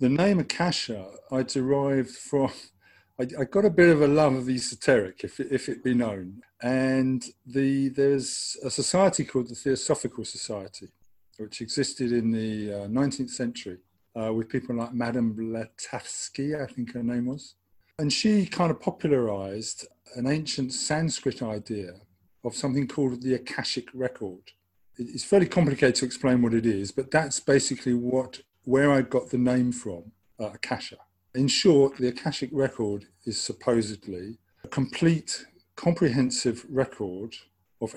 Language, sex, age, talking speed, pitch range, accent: English, male, 50-69, 150 wpm, 115-135 Hz, British